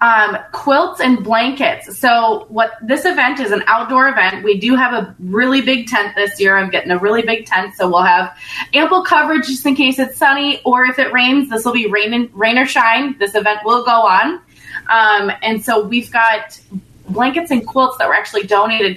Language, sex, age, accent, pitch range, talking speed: English, female, 20-39, American, 205-255 Hz, 210 wpm